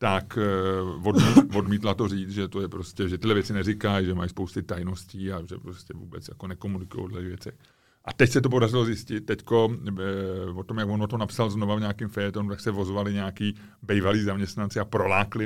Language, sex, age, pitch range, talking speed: Czech, male, 30-49, 100-125 Hz, 205 wpm